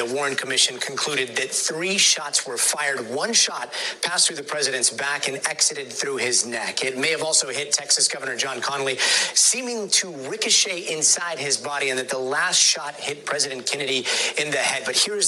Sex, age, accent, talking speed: male, 30-49, American, 195 wpm